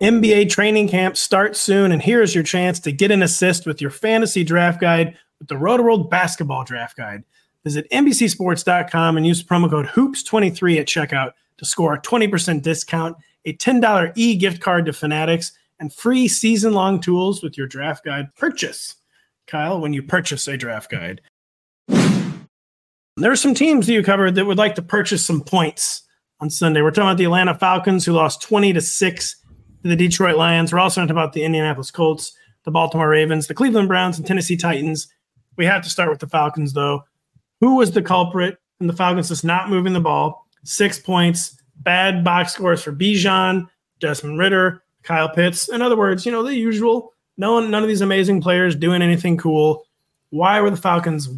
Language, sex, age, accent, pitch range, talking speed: English, male, 30-49, American, 155-195 Hz, 185 wpm